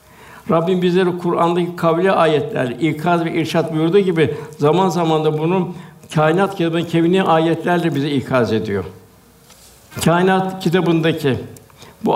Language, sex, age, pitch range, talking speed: Turkish, male, 60-79, 150-180 Hz, 120 wpm